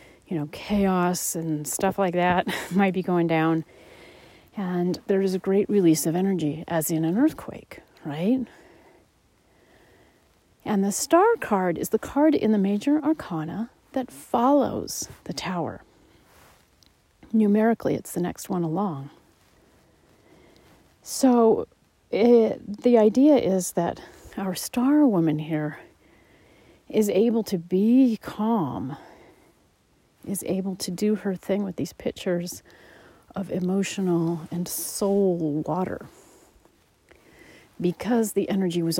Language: English